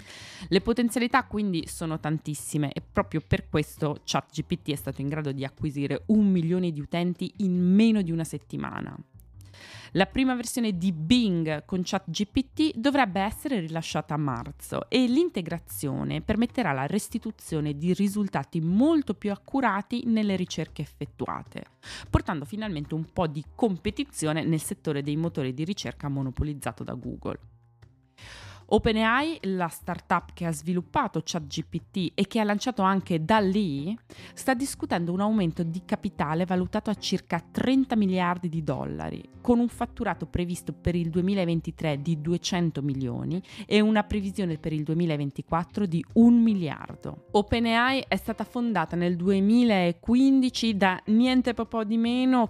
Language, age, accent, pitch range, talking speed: Italian, 20-39, native, 155-220 Hz, 140 wpm